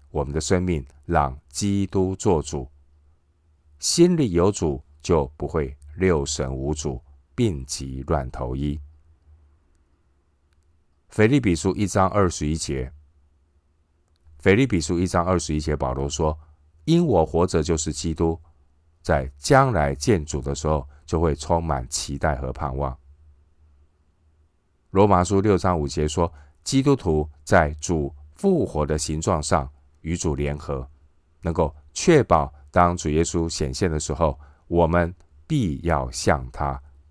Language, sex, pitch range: Chinese, male, 75-85 Hz